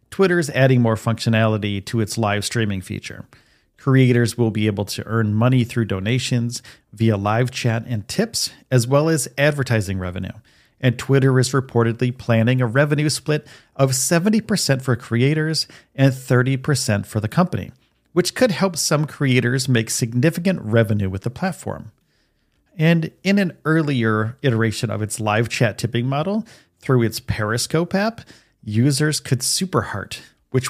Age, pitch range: 40-59, 110-140 Hz